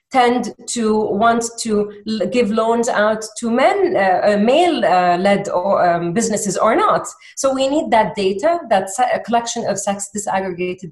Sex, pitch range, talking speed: female, 190-250 Hz, 145 wpm